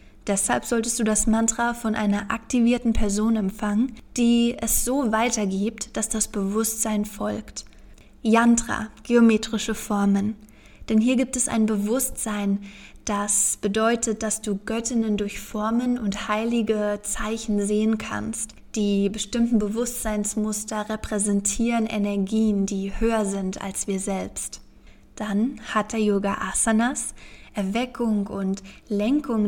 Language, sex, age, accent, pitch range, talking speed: German, female, 20-39, German, 200-230 Hz, 120 wpm